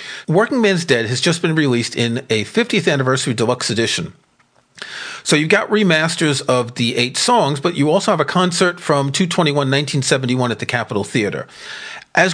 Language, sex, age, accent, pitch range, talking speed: English, male, 40-59, American, 115-170 Hz, 170 wpm